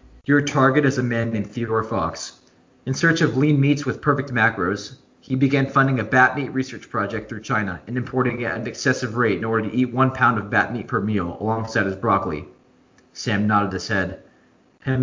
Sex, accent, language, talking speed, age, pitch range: male, American, English, 210 wpm, 20-39, 105-130 Hz